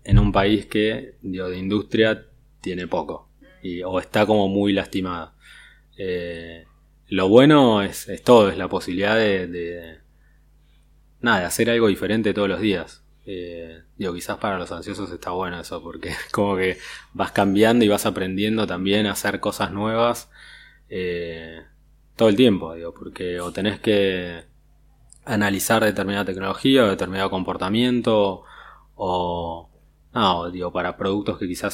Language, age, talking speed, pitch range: Spanish, 20-39, 150 wpm, 85-105 Hz